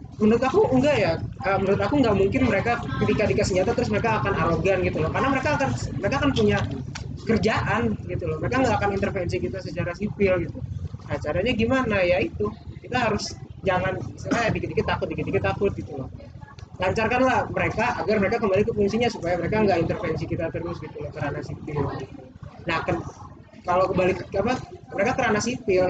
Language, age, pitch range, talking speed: Indonesian, 20-39, 155-210 Hz, 175 wpm